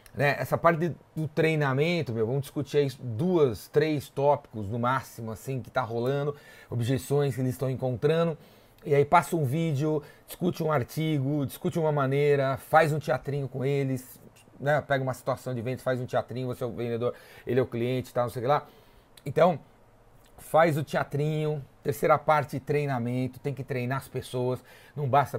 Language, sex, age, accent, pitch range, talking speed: Portuguese, male, 30-49, Brazilian, 120-145 Hz, 180 wpm